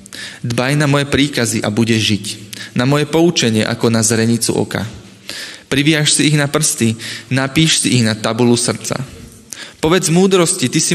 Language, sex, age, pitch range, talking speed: Slovak, male, 20-39, 115-140 Hz, 160 wpm